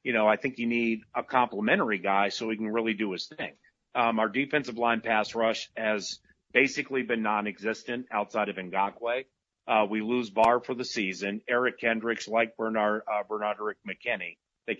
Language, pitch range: English, 105-120 Hz